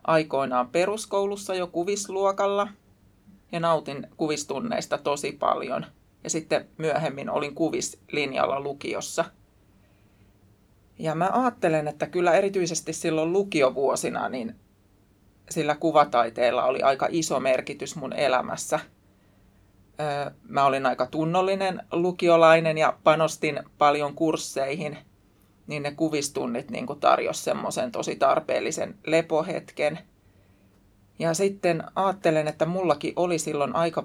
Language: Finnish